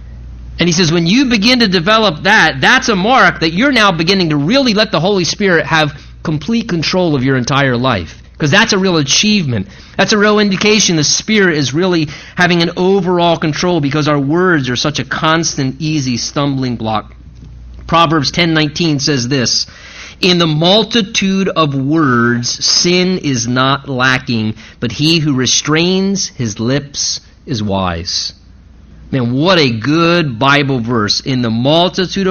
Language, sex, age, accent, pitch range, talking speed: English, male, 30-49, American, 120-185 Hz, 160 wpm